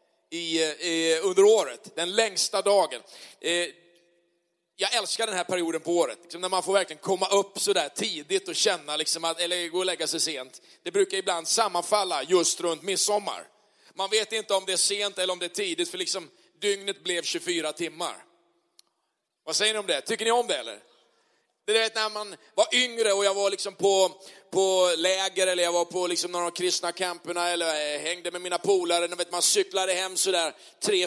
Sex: male